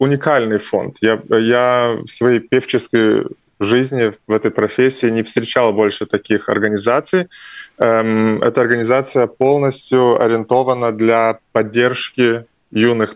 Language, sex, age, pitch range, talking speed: Russian, male, 20-39, 110-120 Hz, 115 wpm